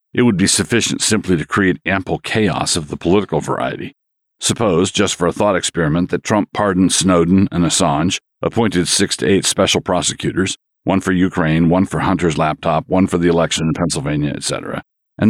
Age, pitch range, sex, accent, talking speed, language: 50-69, 85-100 Hz, male, American, 180 wpm, English